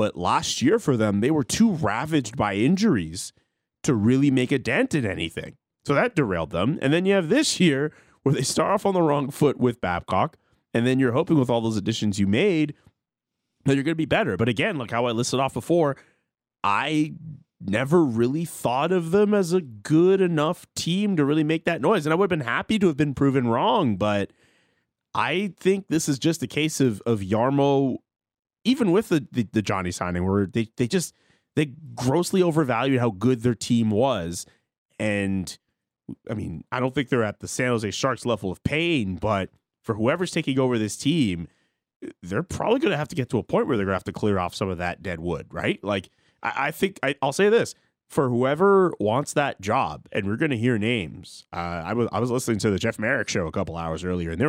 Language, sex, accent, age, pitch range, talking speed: English, male, American, 30-49, 105-155 Hz, 220 wpm